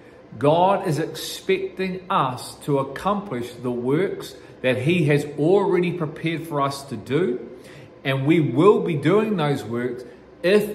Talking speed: 140 wpm